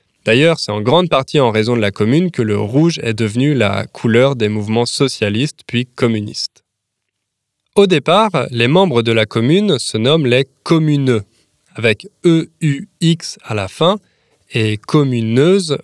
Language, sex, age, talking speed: French, male, 20-39, 150 wpm